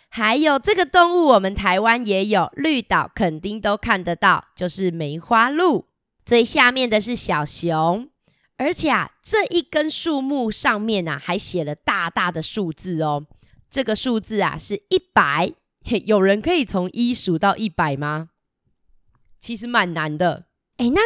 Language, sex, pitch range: Chinese, female, 175-250 Hz